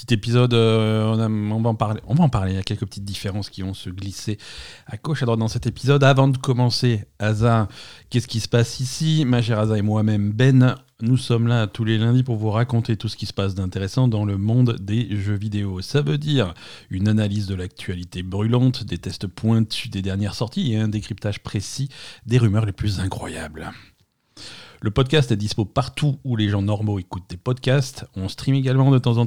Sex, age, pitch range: male, 40-59, 100-125 Hz